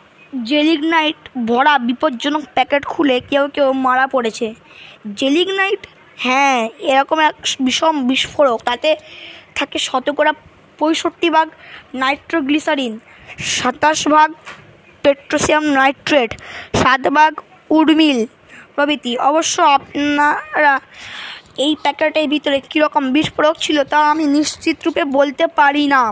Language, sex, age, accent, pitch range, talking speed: Bengali, female, 20-39, native, 265-310 Hz, 100 wpm